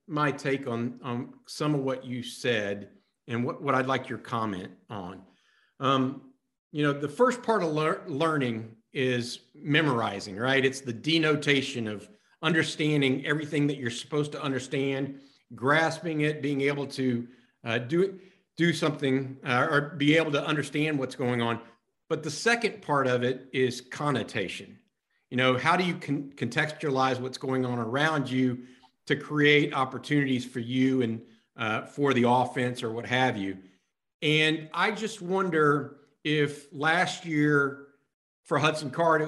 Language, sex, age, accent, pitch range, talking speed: English, male, 50-69, American, 125-150 Hz, 155 wpm